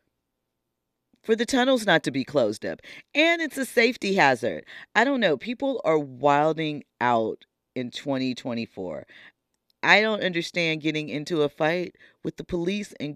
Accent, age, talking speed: American, 40-59, 150 wpm